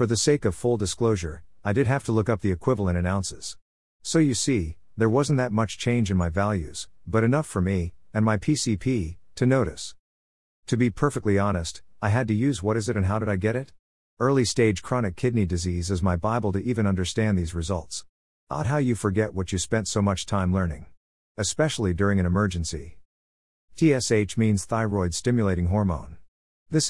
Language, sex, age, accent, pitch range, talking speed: English, male, 50-69, American, 90-115 Hz, 195 wpm